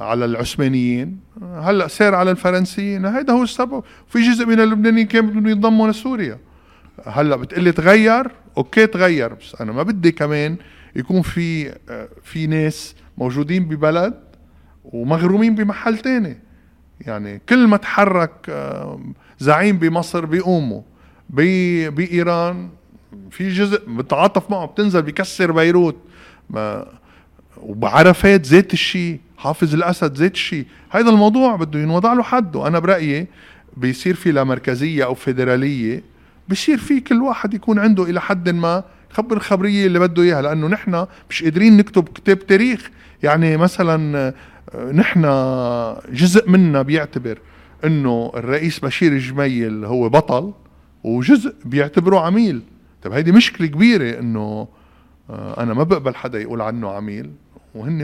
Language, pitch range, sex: Arabic, 130-200 Hz, male